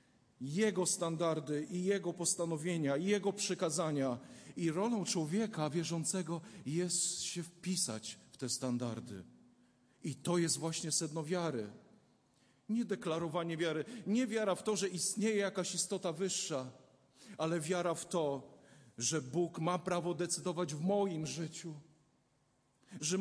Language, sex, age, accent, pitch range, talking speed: Polish, male, 40-59, native, 140-185 Hz, 125 wpm